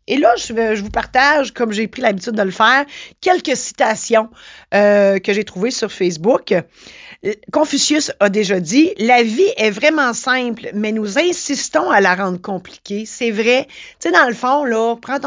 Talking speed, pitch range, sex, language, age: 190 wpm, 190-255 Hz, female, French, 40-59